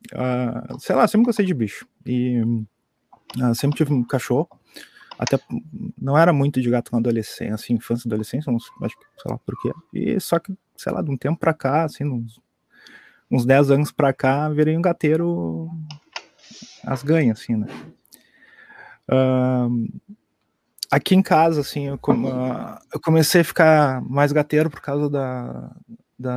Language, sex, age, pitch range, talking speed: Portuguese, male, 20-39, 125-165 Hz, 160 wpm